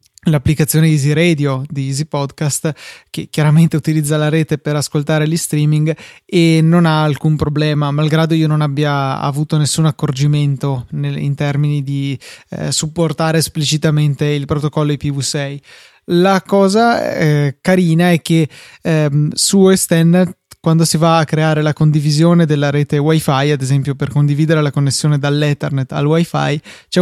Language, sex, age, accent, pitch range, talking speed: Italian, male, 20-39, native, 145-165 Hz, 145 wpm